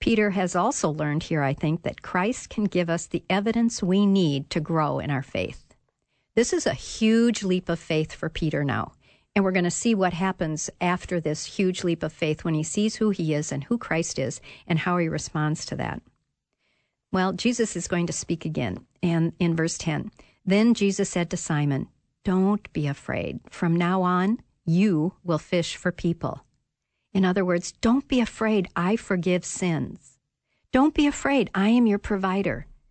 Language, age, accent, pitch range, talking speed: English, 50-69, American, 155-200 Hz, 190 wpm